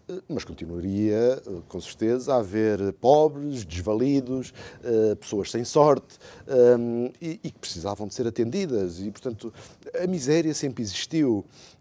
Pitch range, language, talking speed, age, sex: 110-145 Hz, Portuguese, 115 wpm, 50-69, male